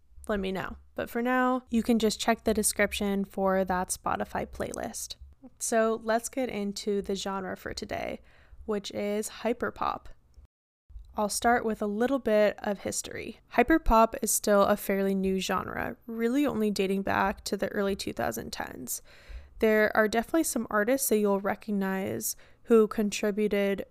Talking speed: 150 wpm